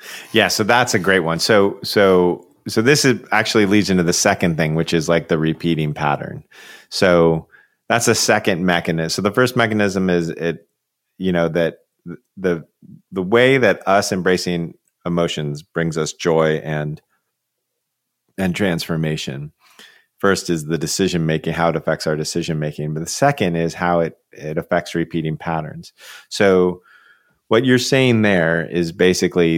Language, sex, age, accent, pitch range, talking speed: English, male, 30-49, American, 80-95 Hz, 160 wpm